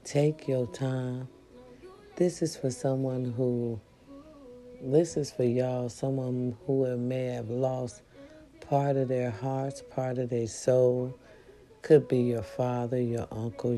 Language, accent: English, American